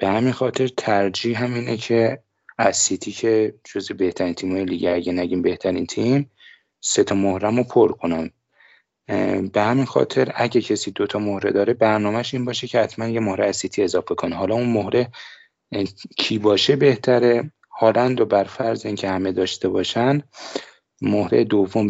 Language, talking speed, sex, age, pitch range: Persian, 155 wpm, male, 30-49, 95-115 Hz